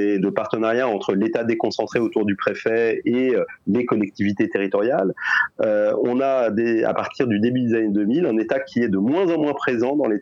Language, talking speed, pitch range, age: French, 200 wpm, 105-140 Hz, 30-49